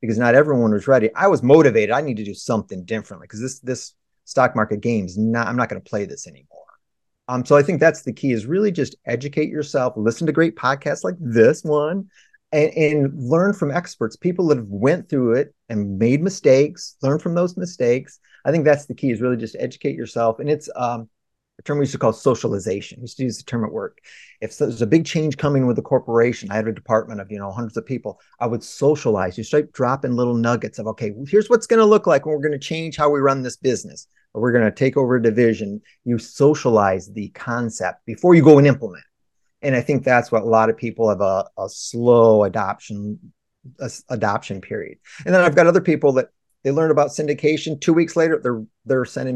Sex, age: male, 30-49